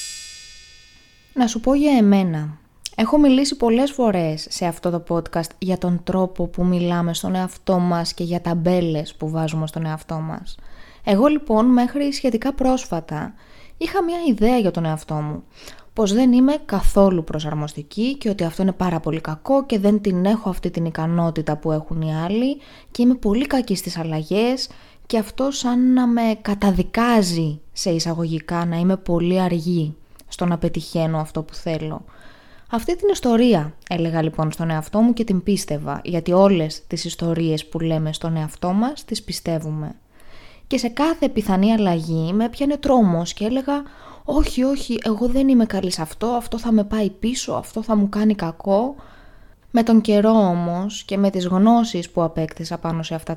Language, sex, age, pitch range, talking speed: Greek, female, 20-39, 165-230 Hz, 170 wpm